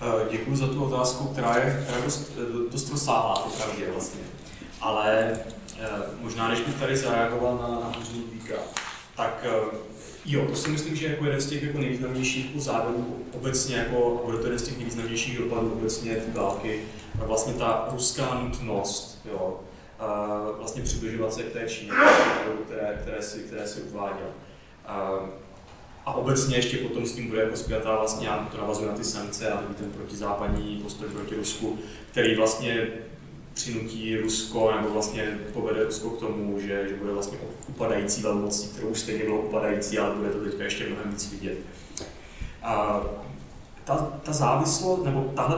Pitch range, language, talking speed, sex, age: 105-125 Hz, Czech, 165 wpm, male, 20-39